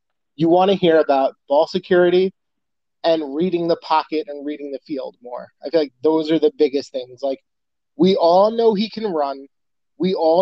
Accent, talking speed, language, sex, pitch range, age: American, 190 wpm, English, male, 150-195 Hz, 30-49